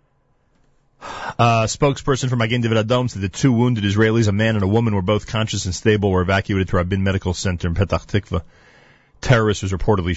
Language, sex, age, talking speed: English, male, 40-59, 210 wpm